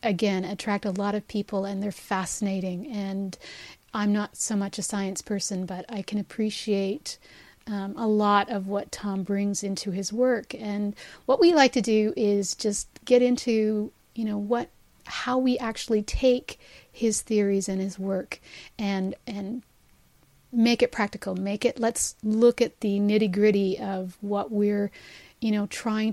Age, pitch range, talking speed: 40-59, 200-235 Hz, 165 wpm